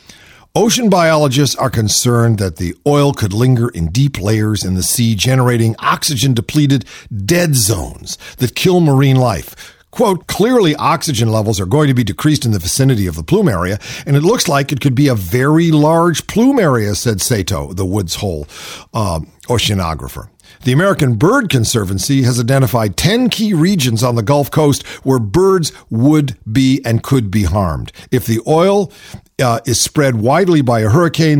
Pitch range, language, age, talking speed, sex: 115-165 Hz, English, 50-69, 170 wpm, male